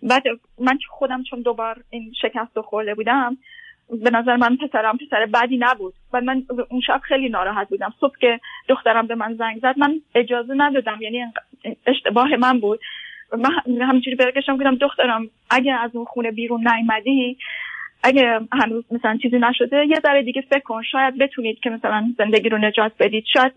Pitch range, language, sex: 235-275 Hz, Persian, female